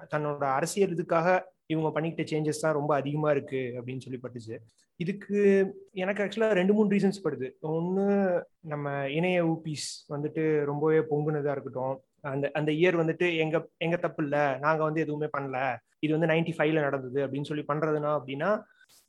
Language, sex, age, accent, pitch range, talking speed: Tamil, male, 30-49, native, 145-190 Hz, 155 wpm